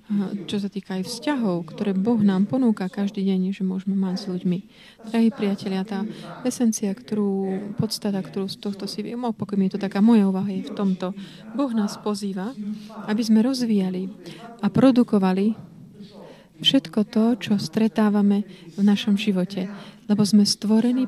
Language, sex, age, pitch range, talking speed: Slovak, female, 30-49, 195-215 Hz, 155 wpm